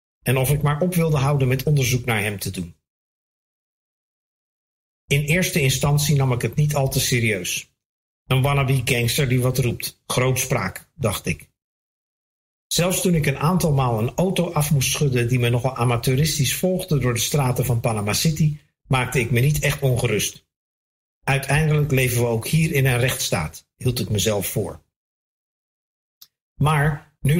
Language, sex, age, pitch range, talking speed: Dutch, male, 50-69, 125-150 Hz, 160 wpm